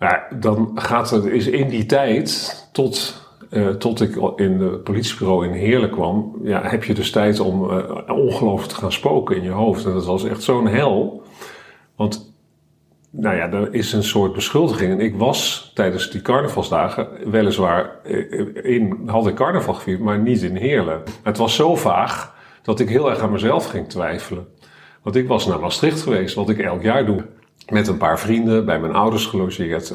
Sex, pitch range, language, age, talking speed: male, 100-125 Hz, Dutch, 50-69, 180 wpm